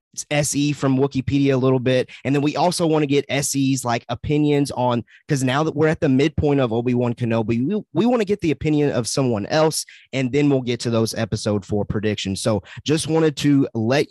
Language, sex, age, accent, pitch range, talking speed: English, male, 30-49, American, 115-145 Hz, 220 wpm